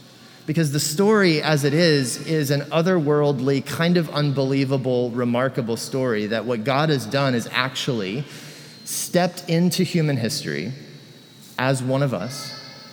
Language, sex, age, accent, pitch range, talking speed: English, male, 30-49, American, 120-165 Hz, 135 wpm